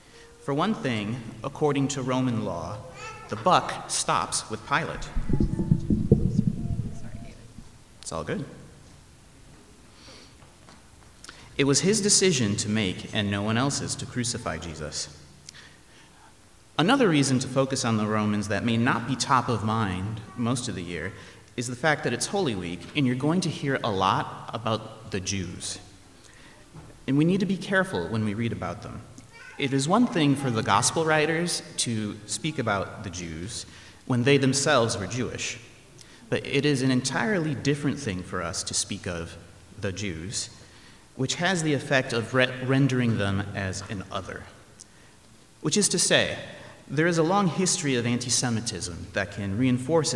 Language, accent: English, American